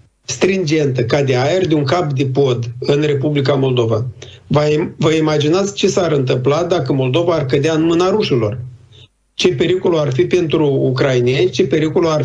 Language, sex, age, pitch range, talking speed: Romanian, male, 50-69, 130-175 Hz, 165 wpm